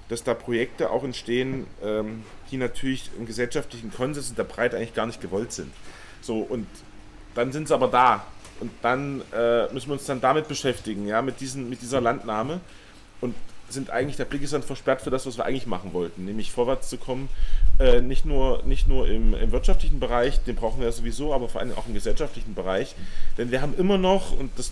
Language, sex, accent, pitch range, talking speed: German, male, German, 115-140 Hz, 205 wpm